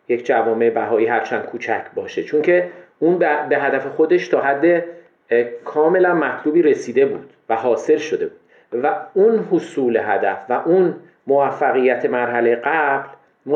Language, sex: Persian, male